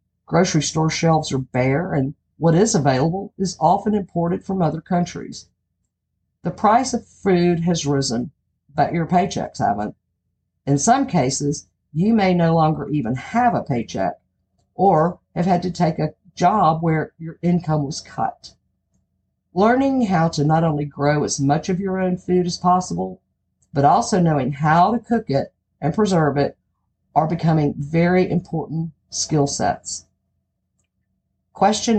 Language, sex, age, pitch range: English, female, 50-69, 135-180 Hz